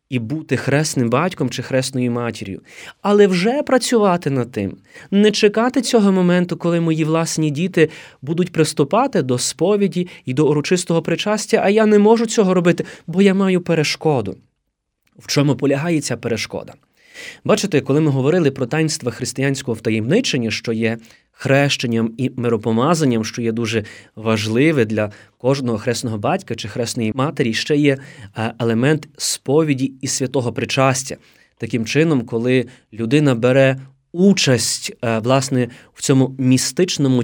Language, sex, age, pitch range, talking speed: Ukrainian, male, 20-39, 125-165 Hz, 135 wpm